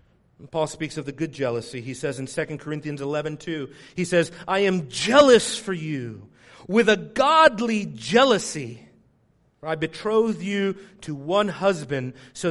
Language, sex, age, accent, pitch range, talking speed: English, male, 40-59, American, 145-180 Hz, 150 wpm